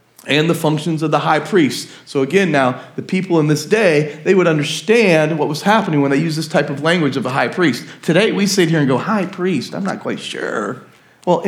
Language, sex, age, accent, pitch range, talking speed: English, male, 40-59, American, 140-200 Hz, 235 wpm